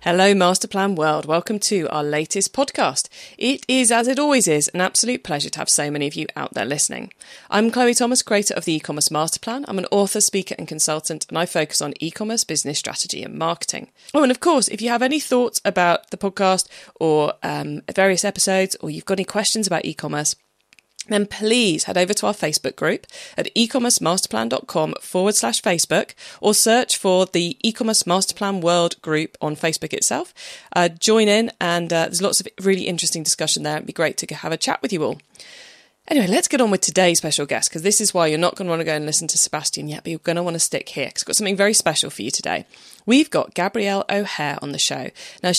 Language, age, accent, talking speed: English, 20-39, British, 220 wpm